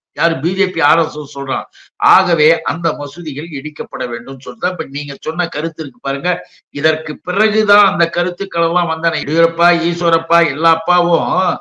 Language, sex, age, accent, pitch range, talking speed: Tamil, male, 60-79, native, 150-185 Hz, 115 wpm